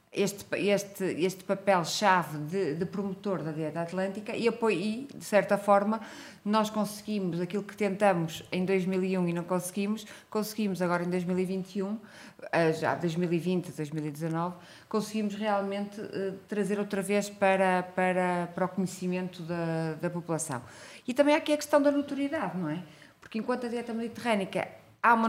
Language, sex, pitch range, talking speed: Portuguese, female, 175-210 Hz, 145 wpm